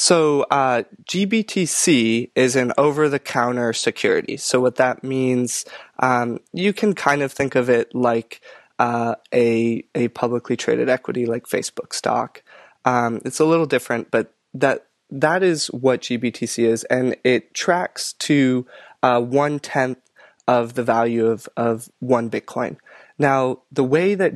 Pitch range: 120-140 Hz